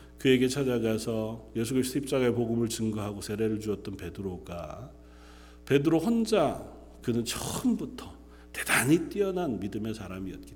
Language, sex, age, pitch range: Korean, male, 40-59, 100-135 Hz